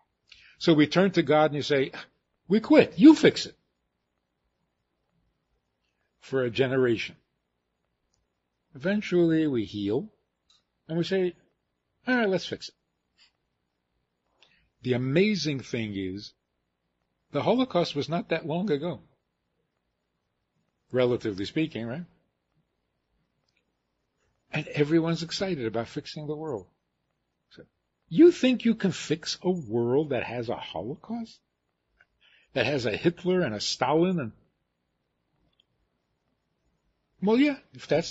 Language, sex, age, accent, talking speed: English, male, 60-79, American, 110 wpm